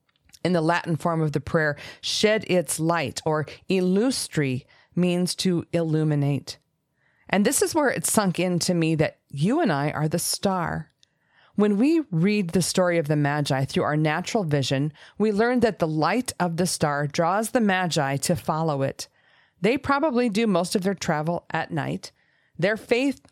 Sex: female